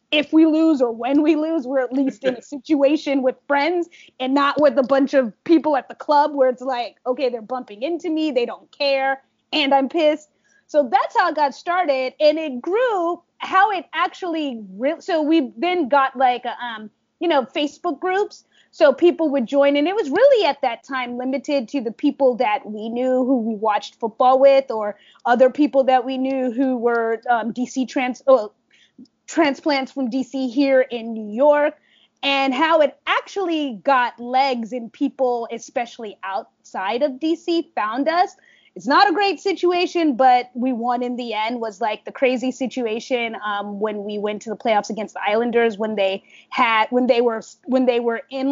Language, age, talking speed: English, 20-39, 190 wpm